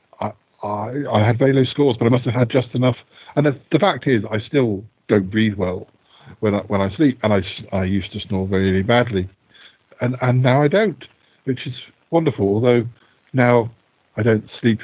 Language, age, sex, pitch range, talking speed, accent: English, 50-69, male, 105-125 Hz, 200 wpm, British